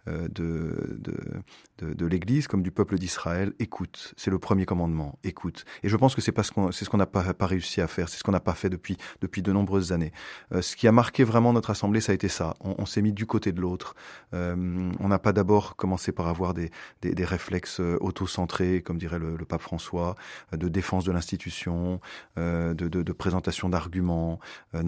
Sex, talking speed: male, 220 wpm